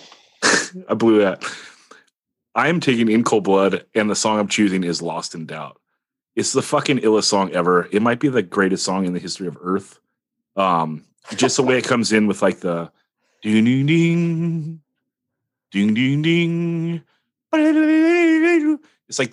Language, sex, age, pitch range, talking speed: English, male, 30-49, 95-125 Hz, 160 wpm